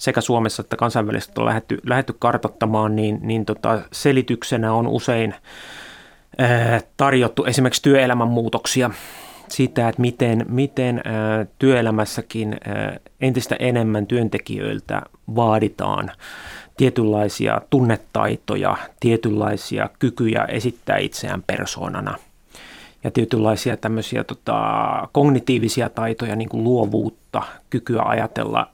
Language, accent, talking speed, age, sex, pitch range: Finnish, native, 90 wpm, 30-49, male, 110-125 Hz